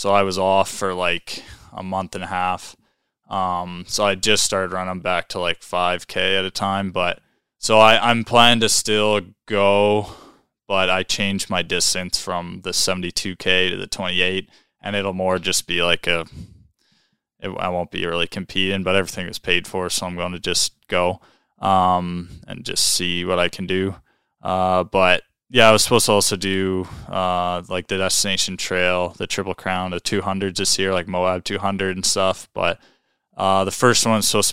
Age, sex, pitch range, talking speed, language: 20-39, male, 90-100 Hz, 185 wpm, English